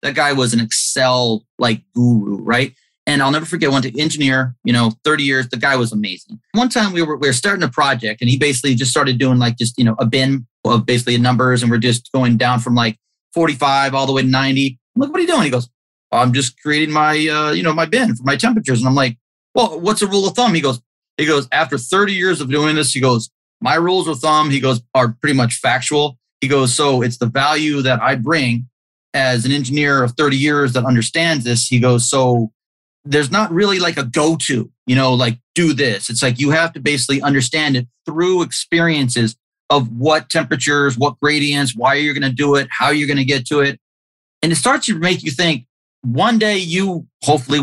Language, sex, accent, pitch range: English, male, American, 125-160 Hz